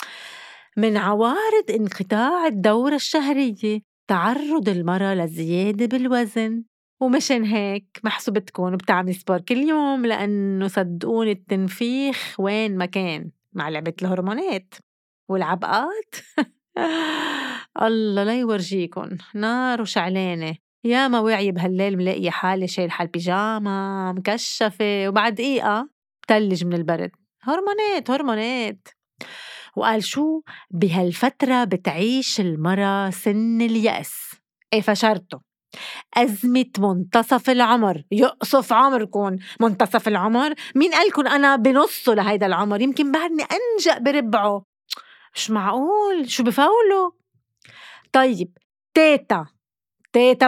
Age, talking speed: 30-49, 95 wpm